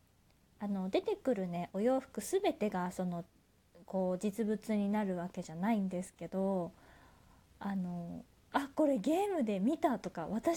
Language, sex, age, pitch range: Japanese, female, 20-39, 180-255 Hz